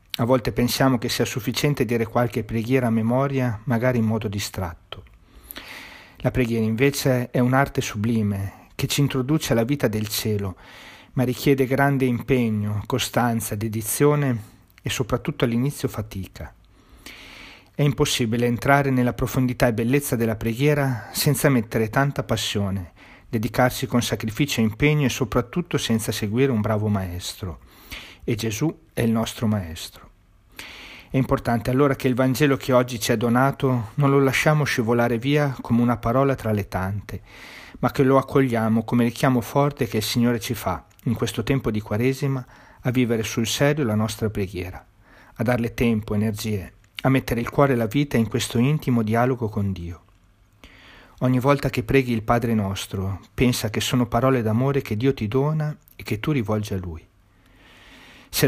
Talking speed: 160 wpm